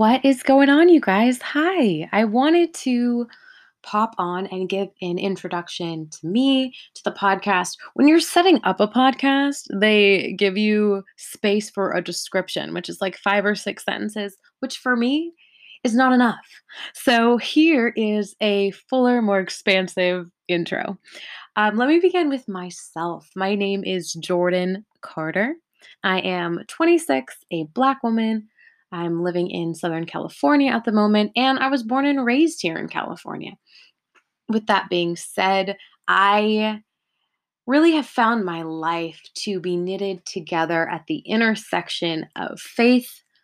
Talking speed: 150 wpm